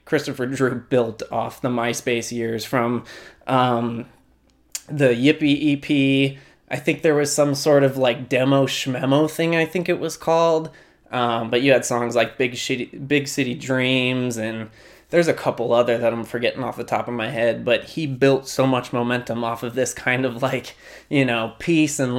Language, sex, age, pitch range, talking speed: English, male, 20-39, 120-145 Hz, 185 wpm